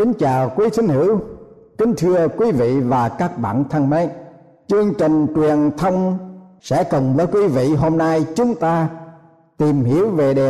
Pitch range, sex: 135-180 Hz, male